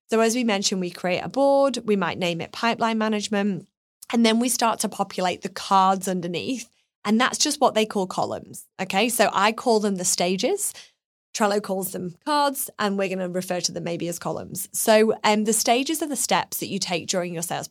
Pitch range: 175-220 Hz